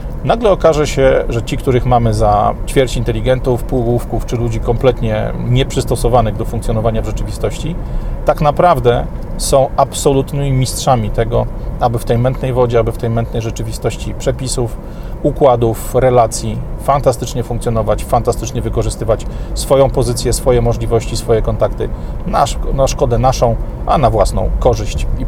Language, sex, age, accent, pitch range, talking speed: Polish, male, 40-59, native, 115-135 Hz, 135 wpm